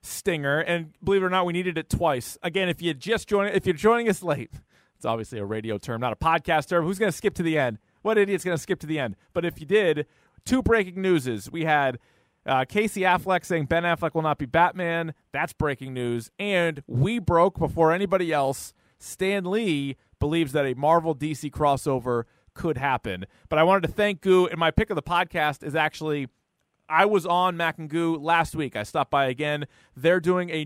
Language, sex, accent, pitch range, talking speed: English, male, American, 130-175 Hz, 225 wpm